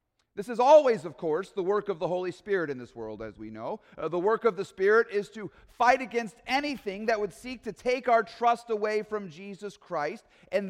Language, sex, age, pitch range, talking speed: English, male, 40-59, 170-230 Hz, 225 wpm